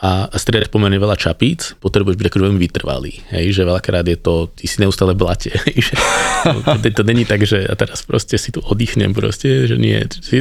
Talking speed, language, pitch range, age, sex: 195 wpm, Slovak, 90-110 Hz, 20-39, male